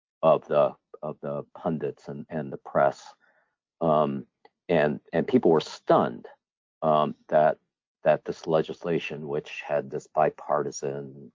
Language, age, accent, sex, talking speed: English, 50-69, American, male, 125 wpm